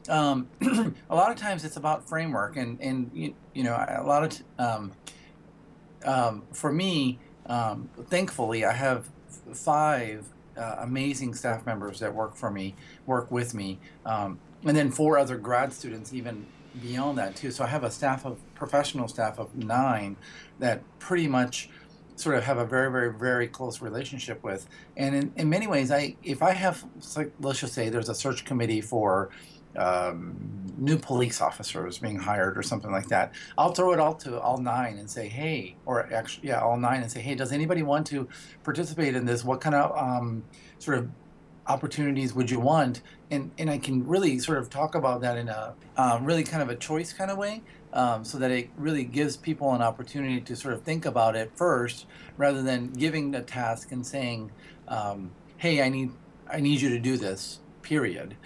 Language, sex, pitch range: English, male, 120-150 Hz